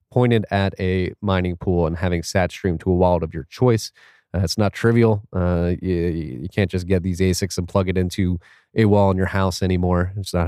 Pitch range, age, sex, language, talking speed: 90-105 Hz, 30-49, male, English, 225 wpm